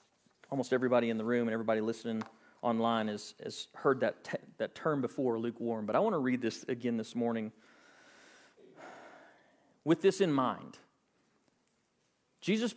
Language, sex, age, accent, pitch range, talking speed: English, male, 40-59, American, 140-205 Hz, 150 wpm